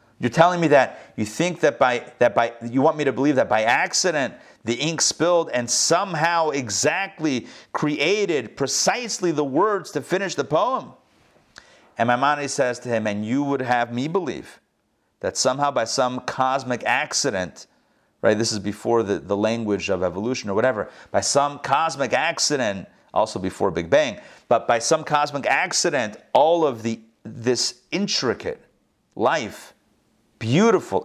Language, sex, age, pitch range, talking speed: English, male, 40-59, 115-155 Hz, 155 wpm